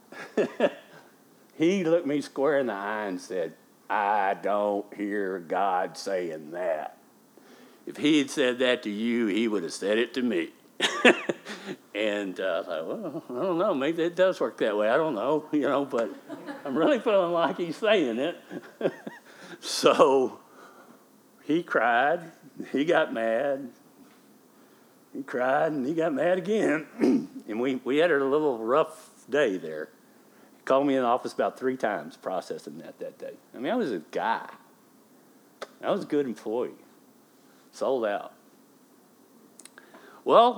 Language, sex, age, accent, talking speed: English, male, 60-79, American, 155 wpm